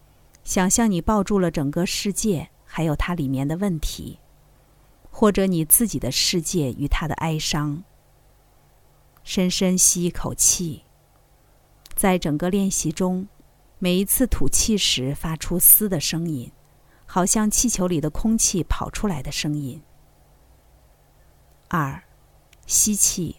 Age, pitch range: 50-69, 150-200 Hz